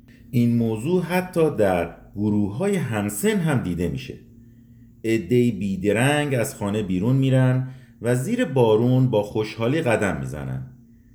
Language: Persian